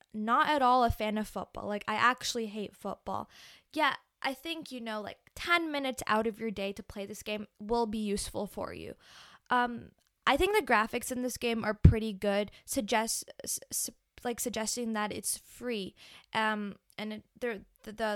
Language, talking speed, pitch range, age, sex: English, 180 wpm, 210-250 Hz, 20-39, female